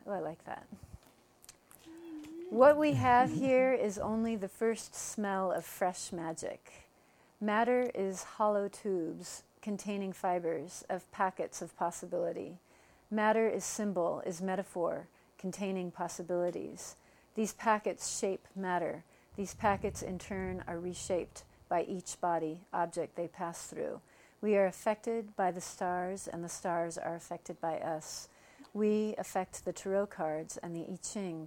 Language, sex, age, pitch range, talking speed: English, female, 40-59, 180-210 Hz, 135 wpm